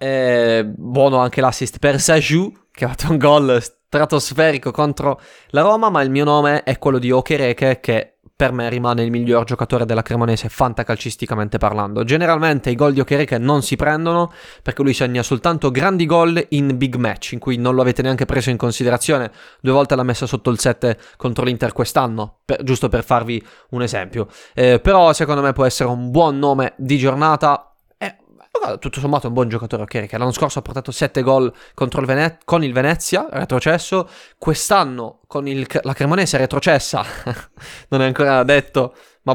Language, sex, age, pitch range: Italian, male, 20-39, 125-150 Hz